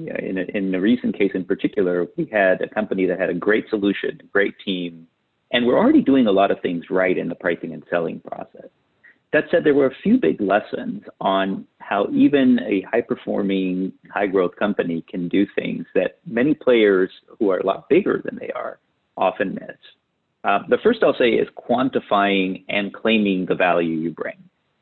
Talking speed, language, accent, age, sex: 185 wpm, English, American, 40-59, male